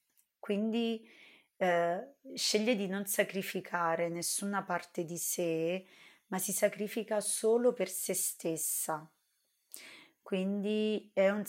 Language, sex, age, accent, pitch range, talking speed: Italian, female, 30-49, native, 170-205 Hz, 105 wpm